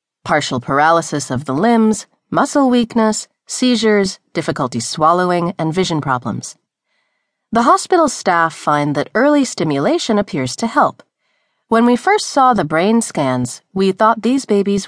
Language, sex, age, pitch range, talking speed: English, female, 40-59, 135-225 Hz, 135 wpm